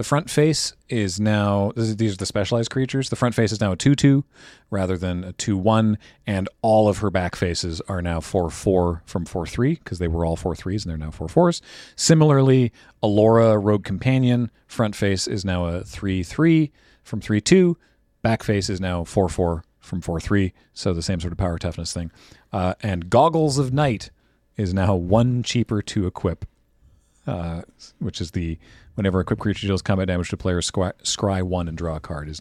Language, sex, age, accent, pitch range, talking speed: English, male, 40-59, American, 90-125 Hz, 180 wpm